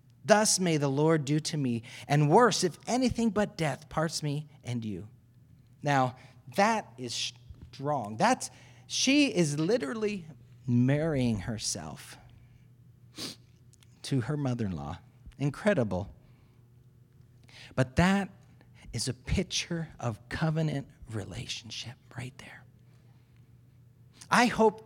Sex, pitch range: male, 125-175 Hz